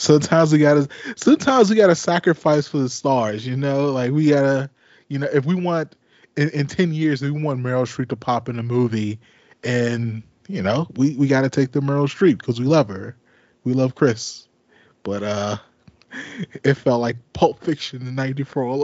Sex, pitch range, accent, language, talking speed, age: male, 110-145 Hz, American, English, 190 wpm, 20-39